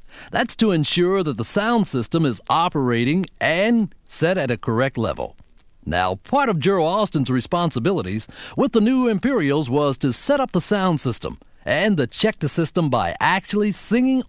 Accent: American